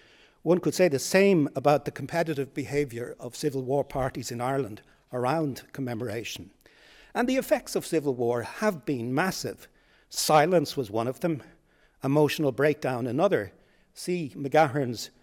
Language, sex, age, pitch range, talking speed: English, male, 60-79, 125-165 Hz, 140 wpm